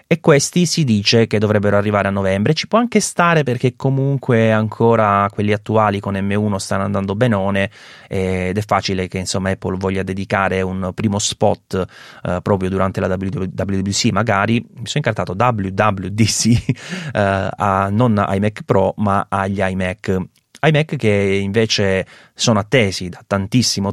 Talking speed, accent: 145 wpm, native